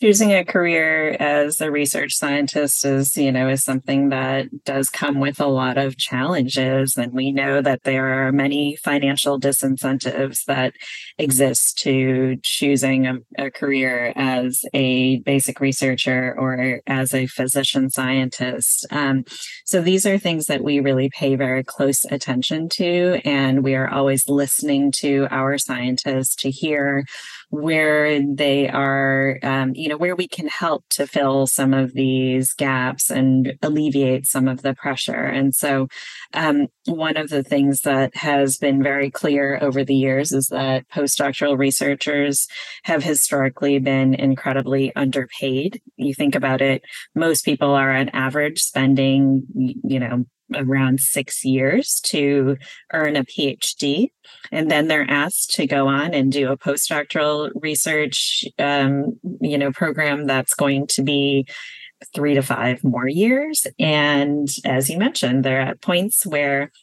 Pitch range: 135-145 Hz